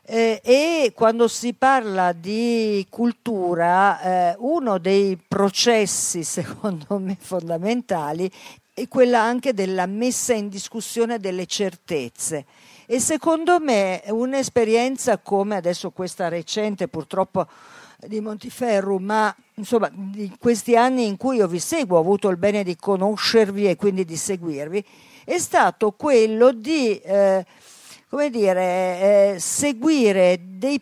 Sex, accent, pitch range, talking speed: female, native, 185-240 Hz, 125 wpm